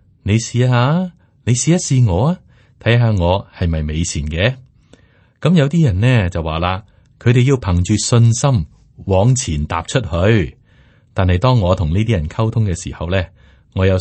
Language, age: Chinese, 30-49